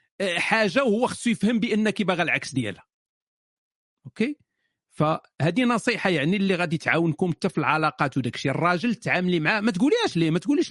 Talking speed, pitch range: 150 wpm, 150-215 Hz